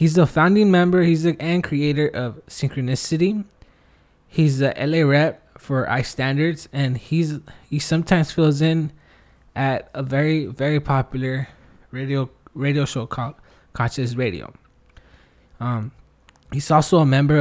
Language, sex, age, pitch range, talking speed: English, male, 20-39, 125-155 Hz, 135 wpm